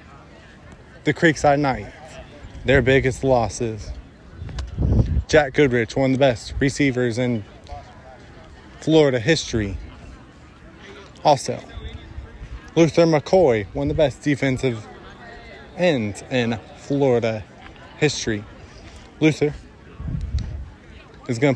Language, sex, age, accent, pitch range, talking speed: English, male, 20-39, American, 95-140 Hz, 85 wpm